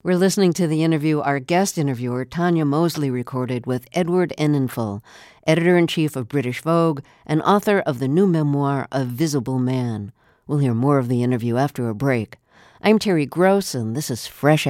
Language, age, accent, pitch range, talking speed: English, 60-79, American, 130-175 Hz, 175 wpm